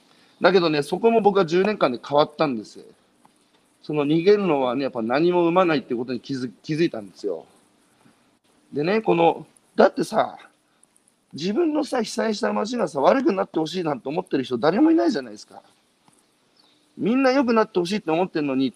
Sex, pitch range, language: male, 140-195 Hz, Japanese